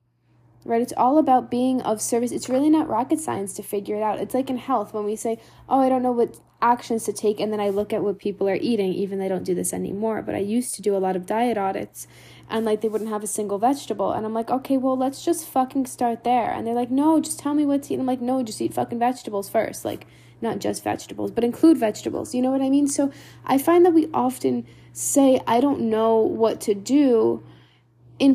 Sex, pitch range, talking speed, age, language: female, 200-255 Hz, 250 wpm, 10-29, English